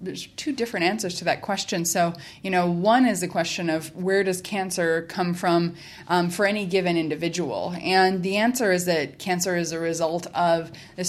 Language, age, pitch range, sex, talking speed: English, 20-39, 165-195 Hz, female, 195 wpm